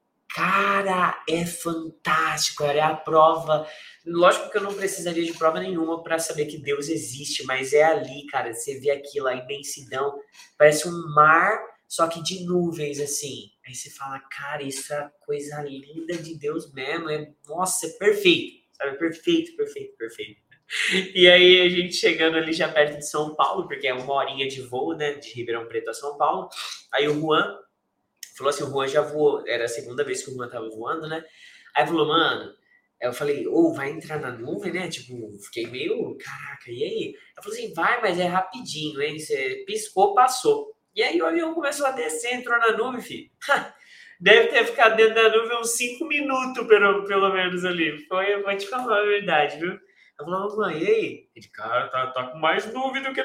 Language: English